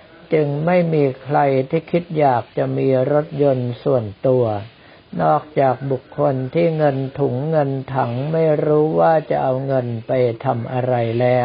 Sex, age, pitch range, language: male, 60-79, 125-155 Hz, Thai